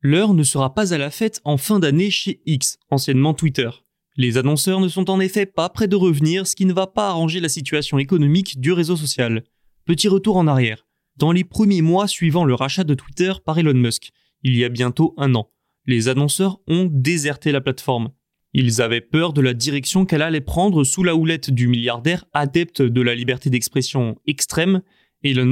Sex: male